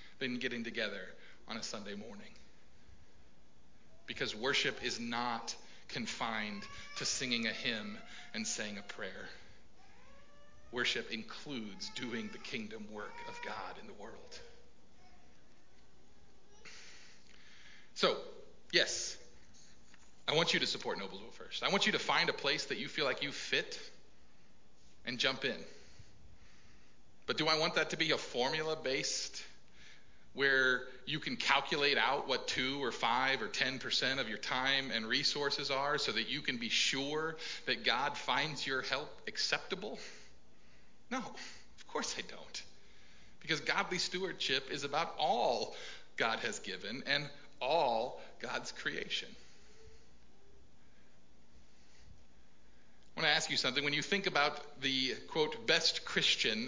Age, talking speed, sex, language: 40-59, 130 wpm, male, English